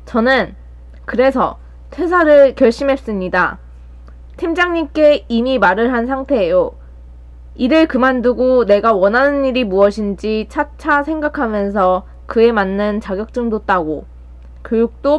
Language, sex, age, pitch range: Korean, female, 20-39, 195-280 Hz